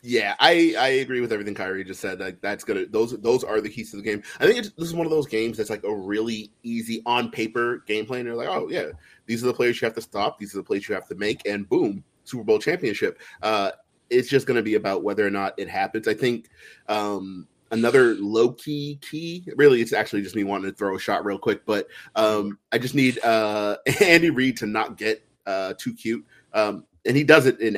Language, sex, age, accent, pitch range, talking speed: English, male, 30-49, American, 105-125 Hz, 245 wpm